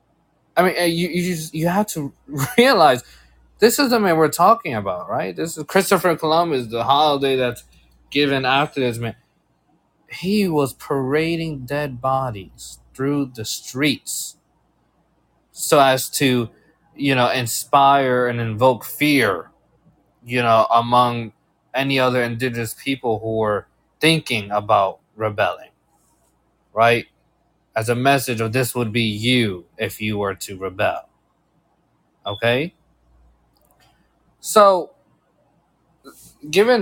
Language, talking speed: English, 120 wpm